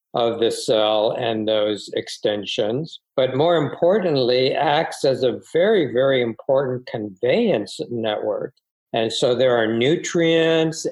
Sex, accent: male, American